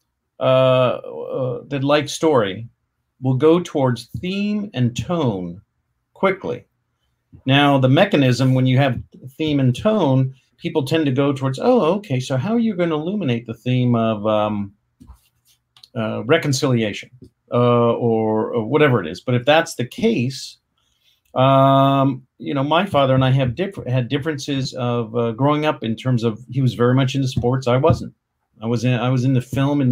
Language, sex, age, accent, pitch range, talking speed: English, male, 50-69, American, 120-145 Hz, 175 wpm